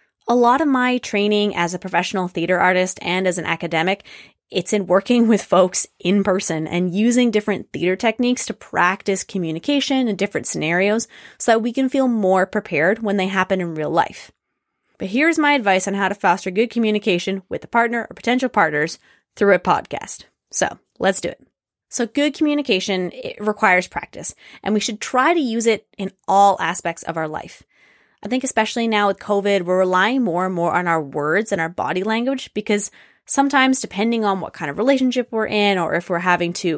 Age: 20-39